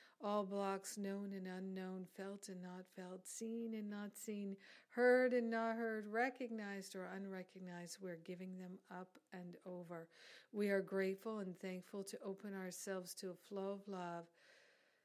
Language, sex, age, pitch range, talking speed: English, female, 50-69, 180-200 Hz, 155 wpm